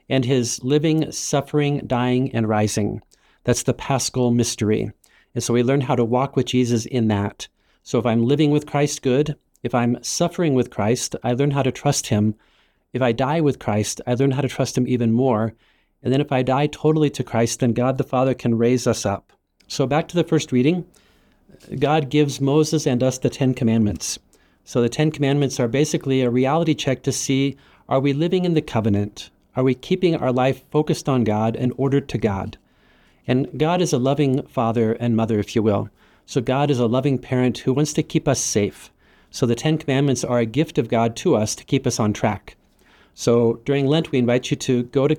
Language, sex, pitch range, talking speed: English, male, 120-145 Hz, 210 wpm